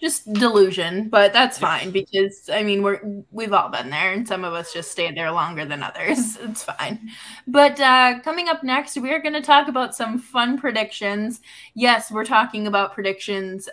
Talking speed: 200 wpm